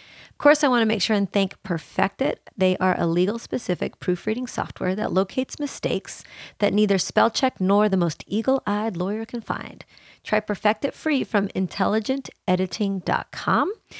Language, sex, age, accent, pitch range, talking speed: English, female, 30-49, American, 180-220 Hz, 165 wpm